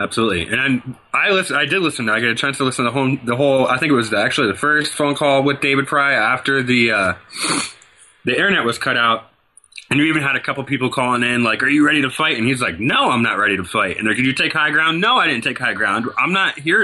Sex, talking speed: male, 280 wpm